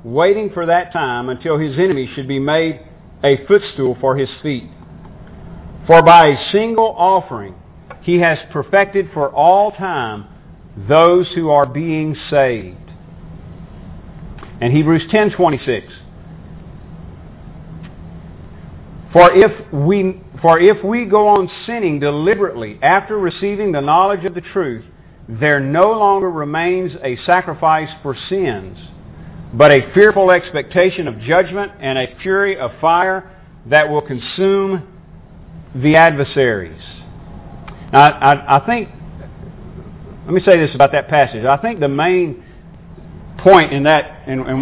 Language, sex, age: English, male, 50-69